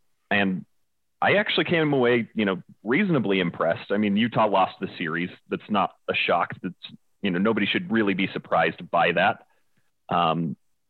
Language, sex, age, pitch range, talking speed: English, male, 30-49, 90-105 Hz, 160 wpm